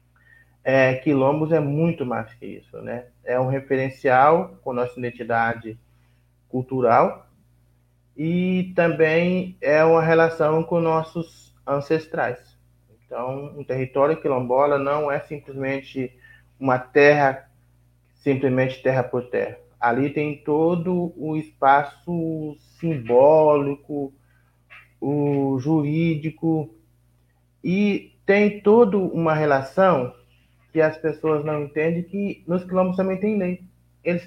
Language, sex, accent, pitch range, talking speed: Portuguese, male, Brazilian, 115-160 Hz, 110 wpm